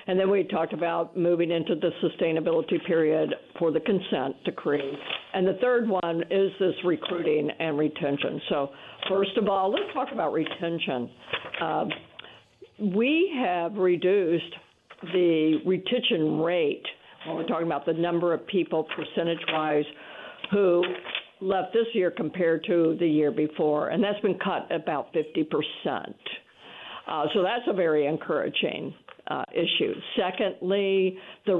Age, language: 60-79, English